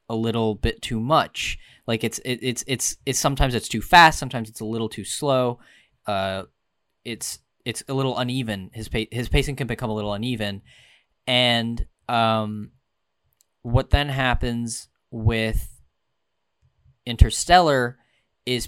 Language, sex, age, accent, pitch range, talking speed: English, male, 10-29, American, 110-135 Hz, 140 wpm